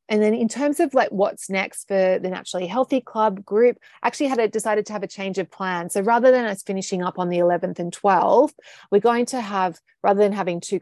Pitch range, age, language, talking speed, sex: 175-220 Hz, 30-49, English, 245 wpm, female